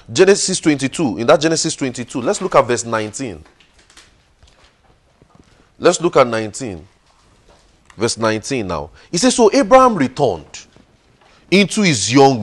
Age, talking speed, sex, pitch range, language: 30-49, 125 wpm, male, 115-180 Hz, English